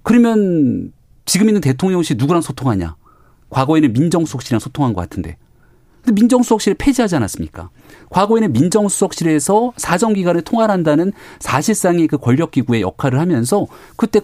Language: Korean